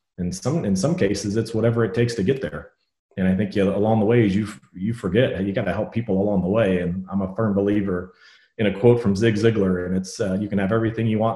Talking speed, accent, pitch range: 265 wpm, American, 95-105 Hz